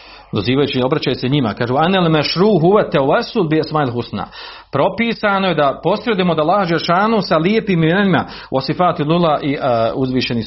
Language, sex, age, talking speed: Croatian, male, 40-59, 160 wpm